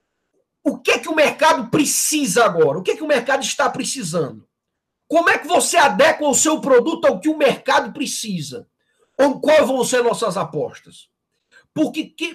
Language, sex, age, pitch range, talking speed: Portuguese, male, 50-69, 190-275 Hz, 175 wpm